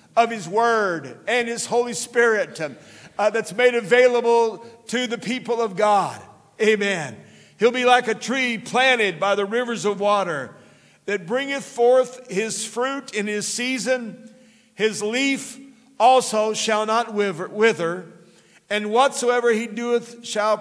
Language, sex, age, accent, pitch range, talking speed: English, male, 50-69, American, 190-235 Hz, 135 wpm